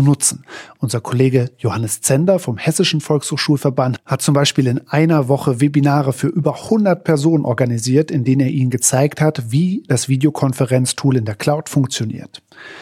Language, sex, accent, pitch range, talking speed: German, male, German, 125-155 Hz, 155 wpm